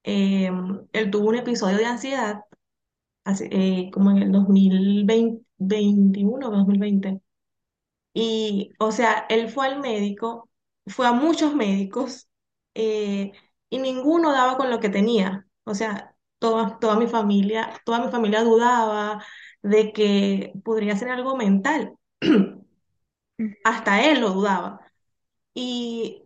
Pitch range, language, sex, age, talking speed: 200-230 Hz, Spanish, female, 20-39, 120 wpm